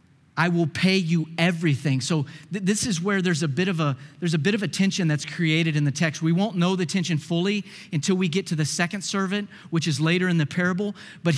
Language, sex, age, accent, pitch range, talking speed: English, male, 40-59, American, 145-185 Hz, 245 wpm